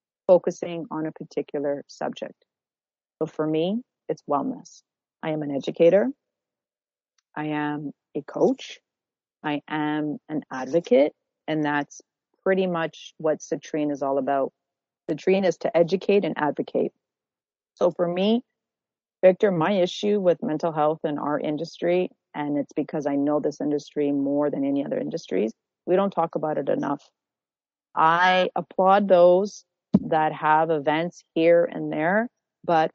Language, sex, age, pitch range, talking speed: English, female, 40-59, 150-185 Hz, 140 wpm